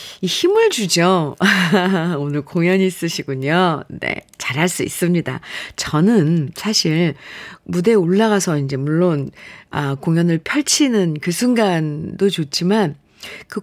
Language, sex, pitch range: Korean, female, 160-220 Hz